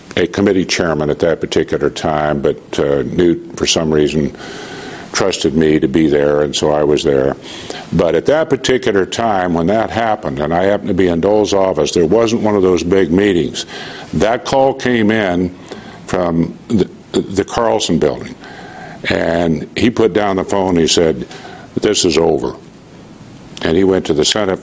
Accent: American